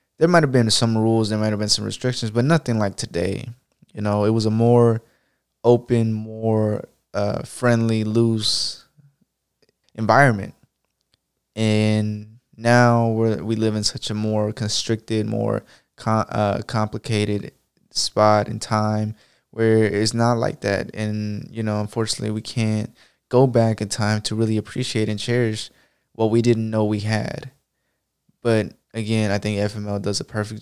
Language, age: English, 20-39